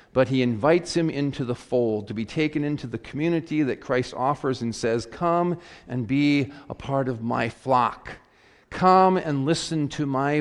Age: 40-59